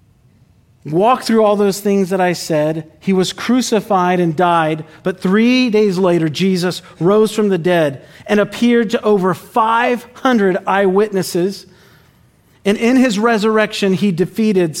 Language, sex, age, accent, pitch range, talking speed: English, male, 40-59, American, 175-220 Hz, 140 wpm